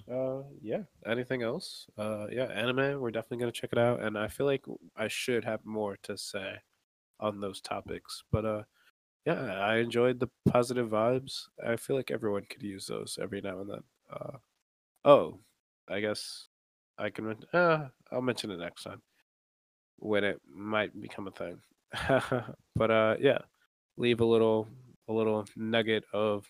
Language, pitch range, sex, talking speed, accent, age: English, 105-120 Hz, male, 170 wpm, American, 20-39